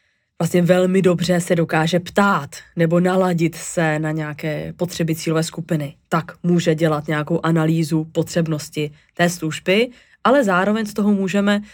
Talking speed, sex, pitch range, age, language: 140 wpm, female, 165-190 Hz, 20-39, Czech